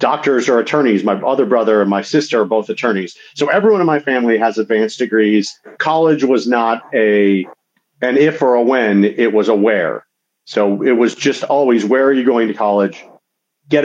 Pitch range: 105-140 Hz